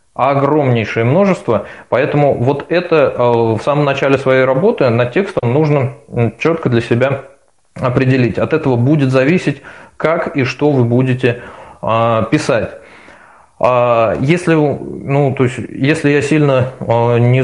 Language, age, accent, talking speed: Russian, 20-39, native, 120 wpm